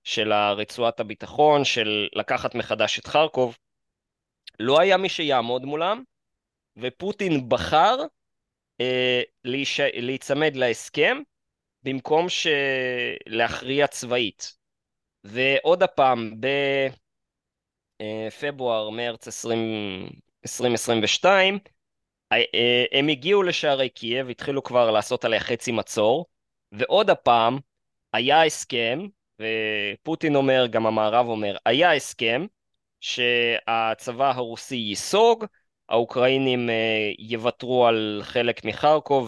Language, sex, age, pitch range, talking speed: Hebrew, male, 20-39, 110-135 Hz, 85 wpm